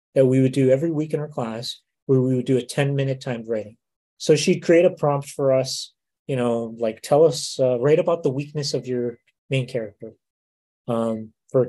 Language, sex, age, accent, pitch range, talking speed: English, male, 30-49, American, 120-145 Hz, 210 wpm